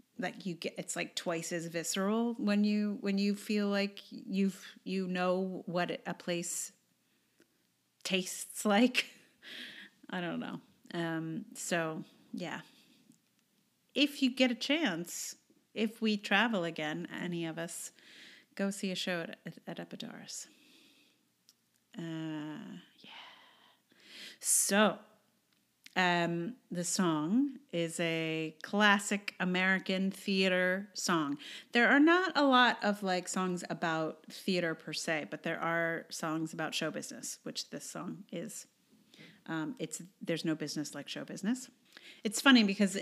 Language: English